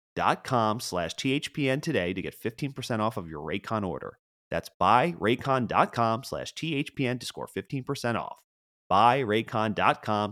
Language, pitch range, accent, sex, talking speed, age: English, 95-140 Hz, American, male, 140 wpm, 30-49